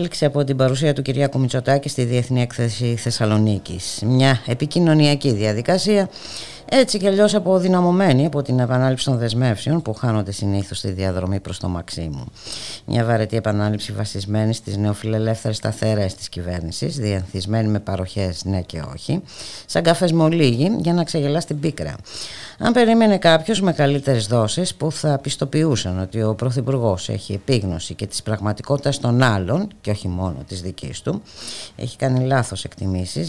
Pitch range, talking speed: 105-145 Hz, 145 wpm